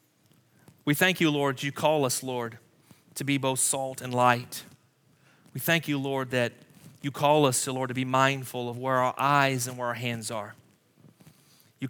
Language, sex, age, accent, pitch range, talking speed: English, male, 30-49, American, 130-155 Hz, 180 wpm